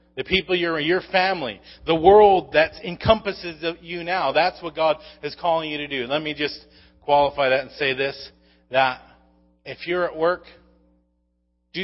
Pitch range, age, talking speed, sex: 140-195 Hz, 30-49, 170 wpm, male